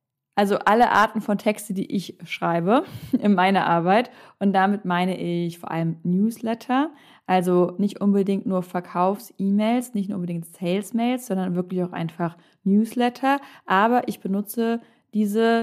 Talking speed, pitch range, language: 135 wpm, 180-225 Hz, German